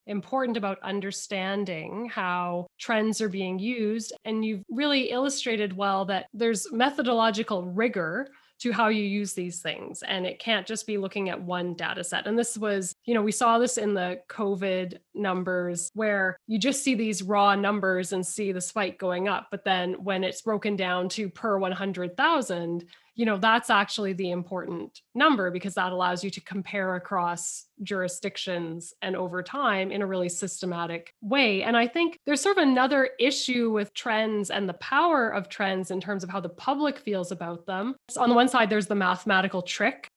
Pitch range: 185-230 Hz